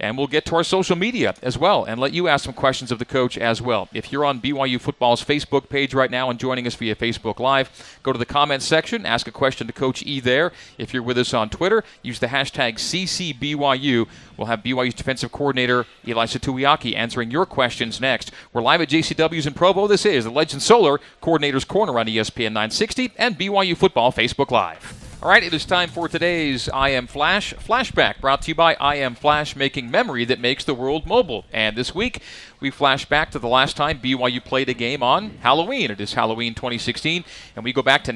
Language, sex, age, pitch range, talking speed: English, male, 40-59, 125-155 Hz, 220 wpm